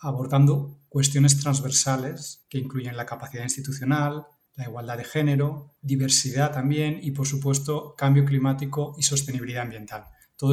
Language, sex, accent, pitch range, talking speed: Spanish, male, Spanish, 125-140 Hz, 130 wpm